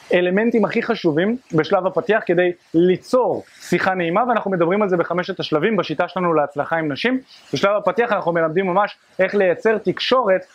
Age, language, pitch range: 20-39, Hebrew, 165-210 Hz